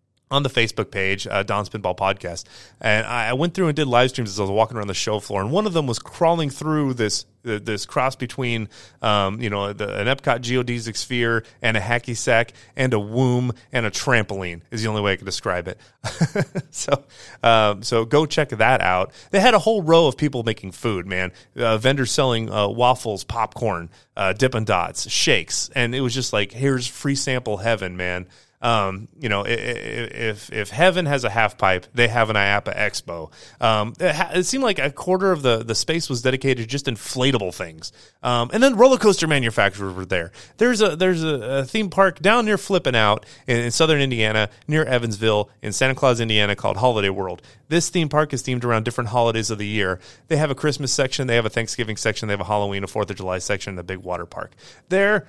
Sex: male